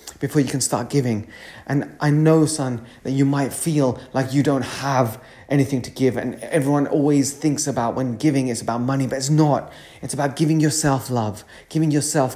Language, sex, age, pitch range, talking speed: English, male, 30-49, 105-145 Hz, 195 wpm